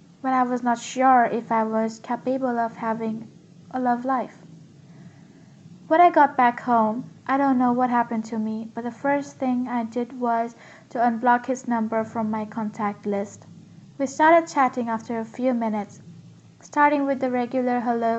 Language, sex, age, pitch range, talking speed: English, female, 20-39, 220-265 Hz, 175 wpm